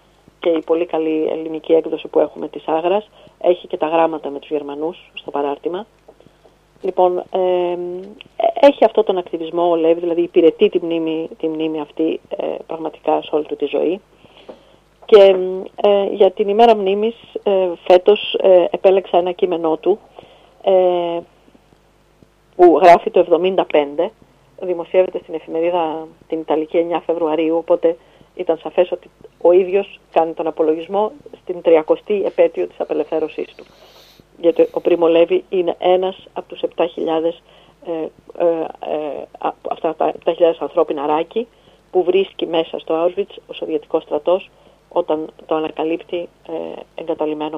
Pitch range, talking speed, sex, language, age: 160-190 Hz, 135 wpm, female, Greek, 40-59